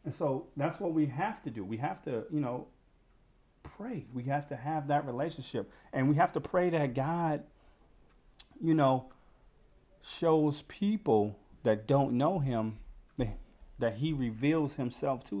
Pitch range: 115-150 Hz